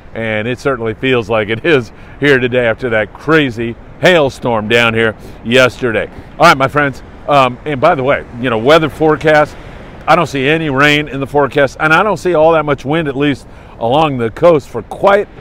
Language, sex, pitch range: English, male, 120-155 Hz